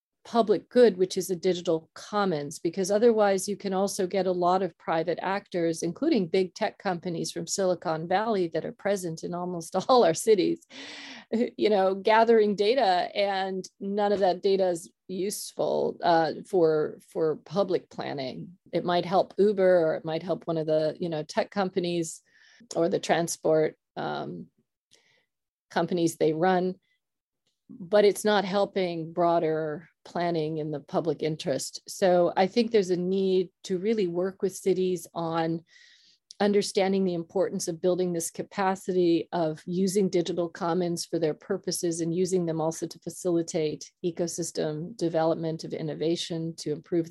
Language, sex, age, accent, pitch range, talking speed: English, female, 40-59, American, 165-200 Hz, 150 wpm